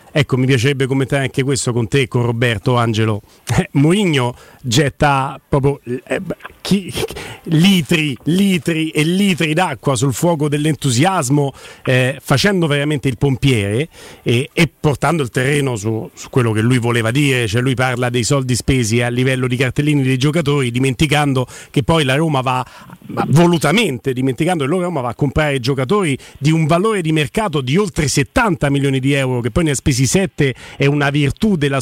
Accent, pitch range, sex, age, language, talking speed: native, 130-165 Hz, male, 40-59, Italian, 170 wpm